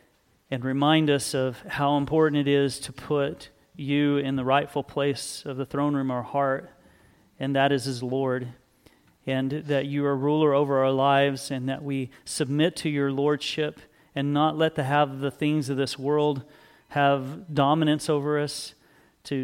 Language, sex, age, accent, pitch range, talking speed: English, male, 40-59, American, 135-150 Hz, 175 wpm